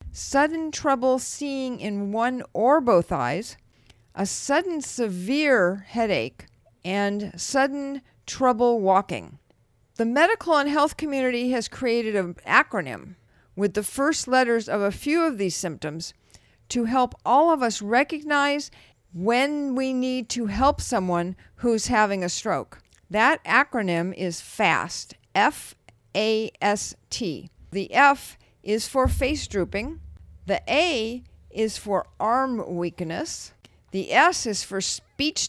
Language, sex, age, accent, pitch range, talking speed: English, female, 50-69, American, 195-275 Hz, 125 wpm